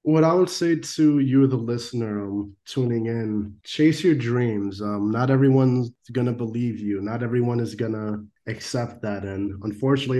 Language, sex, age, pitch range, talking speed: English, male, 20-39, 105-125 Hz, 175 wpm